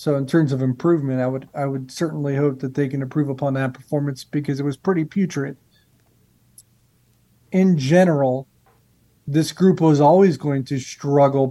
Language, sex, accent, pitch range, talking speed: English, male, American, 135-160 Hz, 165 wpm